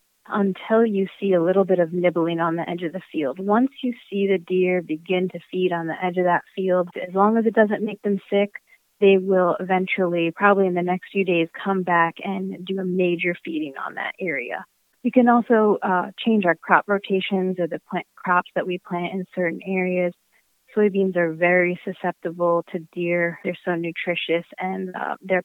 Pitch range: 175-200 Hz